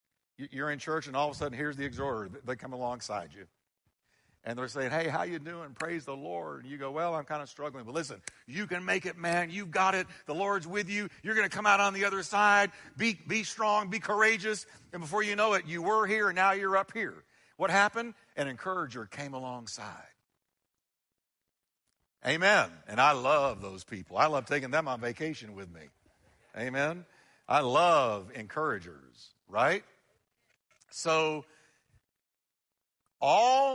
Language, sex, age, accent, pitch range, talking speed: English, male, 60-79, American, 135-195 Hz, 180 wpm